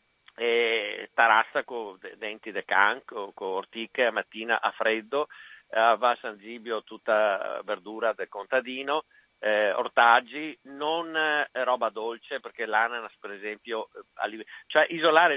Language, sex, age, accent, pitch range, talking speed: Italian, male, 50-69, native, 115-165 Hz, 140 wpm